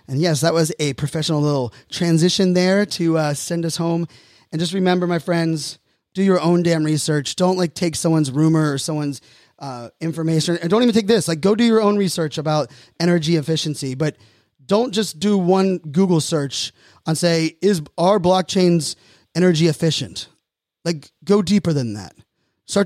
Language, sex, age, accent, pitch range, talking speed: English, male, 20-39, American, 145-175 Hz, 175 wpm